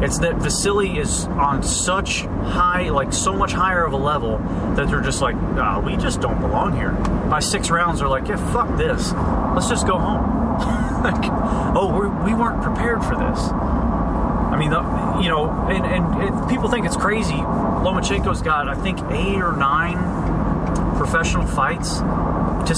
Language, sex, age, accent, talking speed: English, male, 30-49, American, 175 wpm